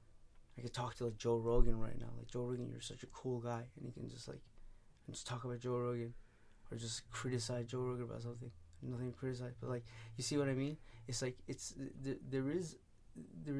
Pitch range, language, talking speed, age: 110-130 Hz, English, 220 wpm, 20-39